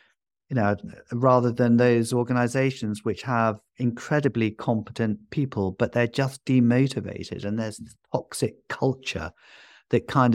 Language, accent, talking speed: English, British, 120 wpm